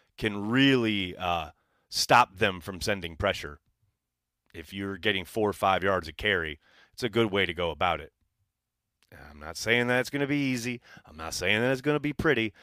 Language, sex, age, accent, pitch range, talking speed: English, male, 30-49, American, 90-120 Hz, 205 wpm